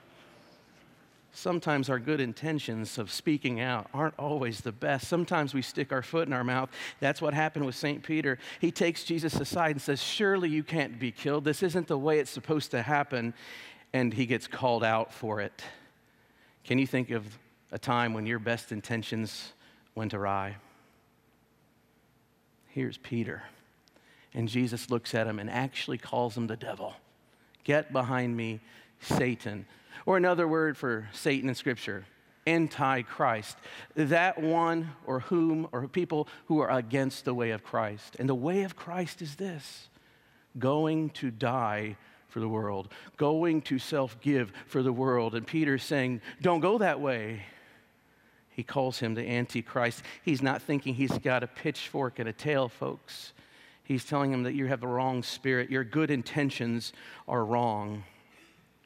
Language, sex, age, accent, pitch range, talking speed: English, male, 50-69, American, 120-150 Hz, 160 wpm